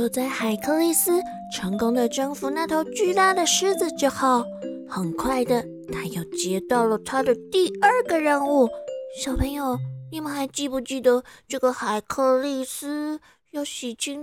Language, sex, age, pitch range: Chinese, female, 20-39, 240-320 Hz